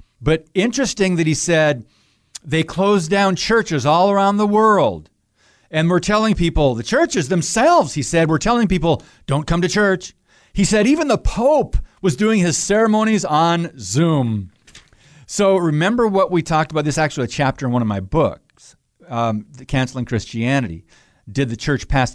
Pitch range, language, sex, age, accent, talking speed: 130-190 Hz, English, male, 40-59, American, 175 wpm